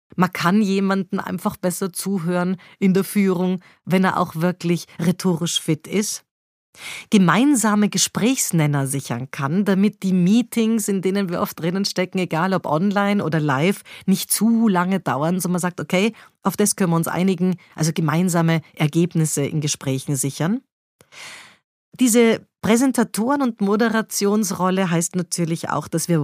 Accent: German